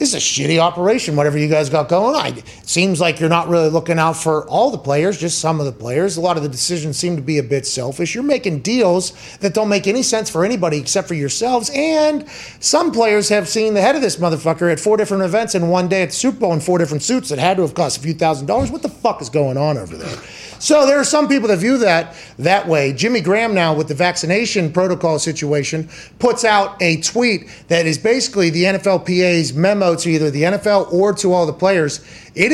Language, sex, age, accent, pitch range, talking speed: English, male, 30-49, American, 160-200 Hz, 245 wpm